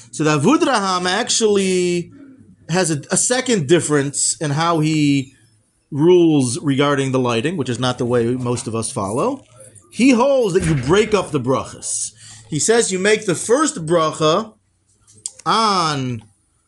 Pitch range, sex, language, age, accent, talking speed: 130-195 Hz, male, English, 40-59, American, 145 wpm